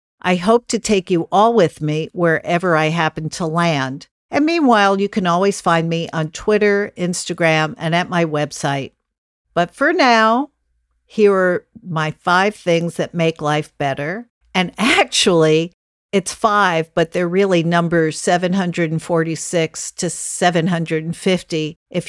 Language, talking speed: English, 140 wpm